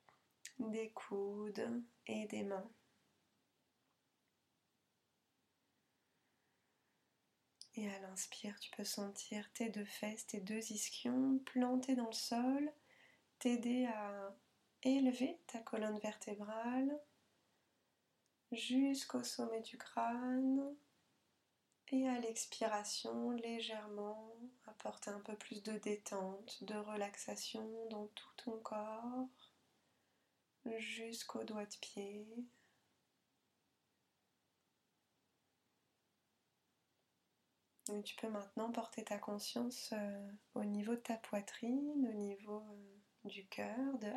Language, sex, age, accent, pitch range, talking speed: French, female, 20-39, French, 210-245 Hz, 95 wpm